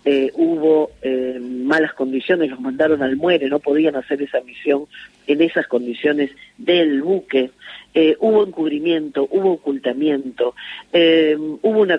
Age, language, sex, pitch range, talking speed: 40-59, Spanish, female, 130-165 Hz, 135 wpm